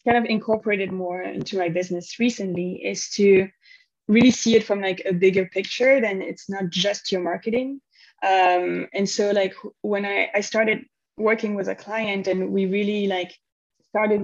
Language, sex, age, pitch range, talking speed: English, female, 20-39, 170-205 Hz, 175 wpm